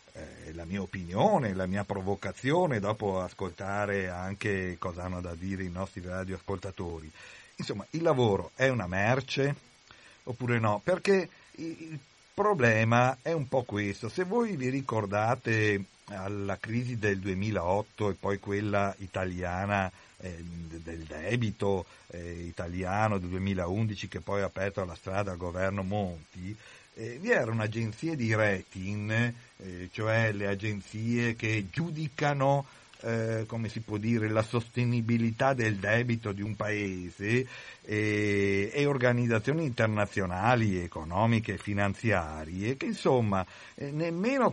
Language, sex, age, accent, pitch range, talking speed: Italian, male, 50-69, native, 95-125 Hz, 125 wpm